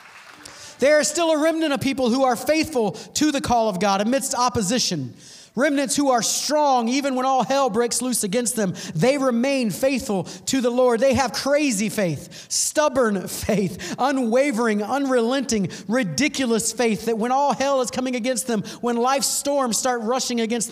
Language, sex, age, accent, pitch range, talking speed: English, male, 40-59, American, 215-260 Hz, 170 wpm